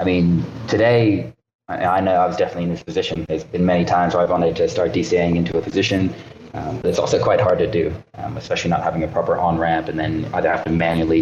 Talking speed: 240 wpm